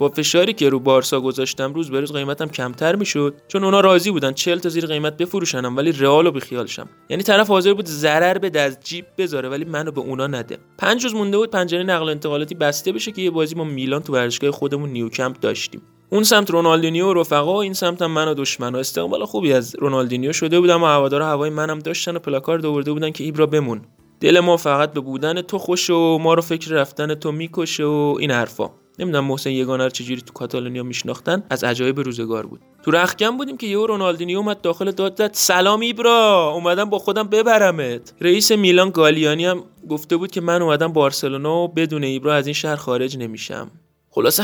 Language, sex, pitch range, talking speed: Persian, male, 135-180 Hz, 200 wpm